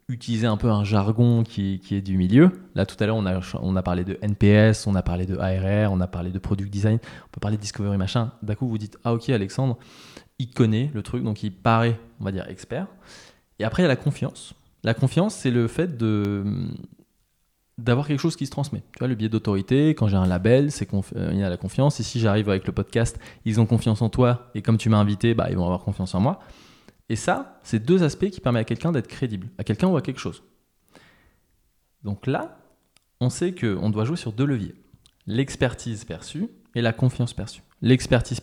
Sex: male